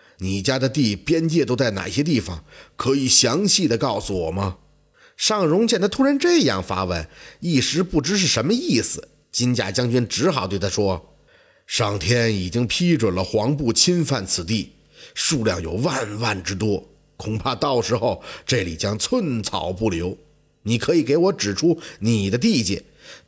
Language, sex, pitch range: Chinese, male, 110-185 Hz